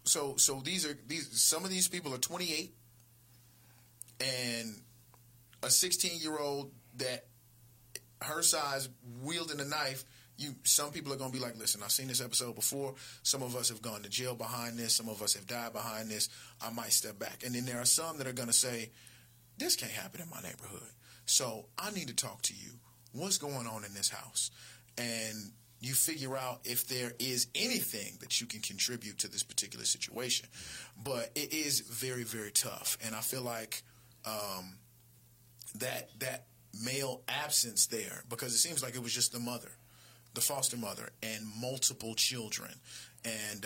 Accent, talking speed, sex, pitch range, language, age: American, 180 wpm, male, 115-130 Hz, English, 30-49